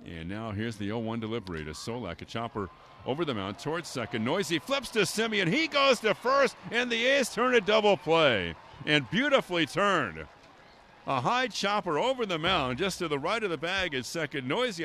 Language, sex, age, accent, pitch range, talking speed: English, male, 50-69, American, 130-200 Hz, 200 wpm